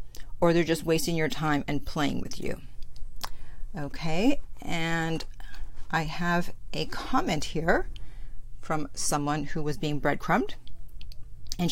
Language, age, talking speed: English, 50-69, 125 wpm